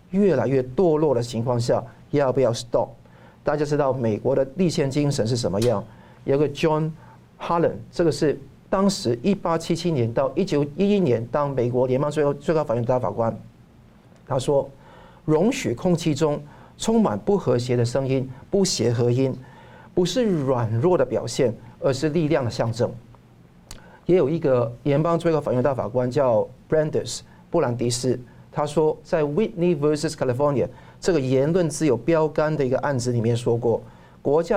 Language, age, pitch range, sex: Chinese, 50-69, 120-165 Hz, male